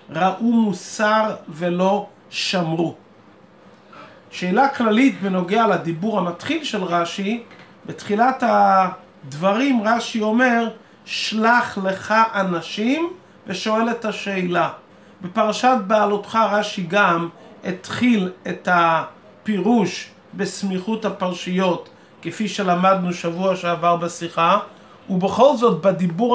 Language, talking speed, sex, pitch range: Hebrew, 85 wpm, male, 180-220 Hz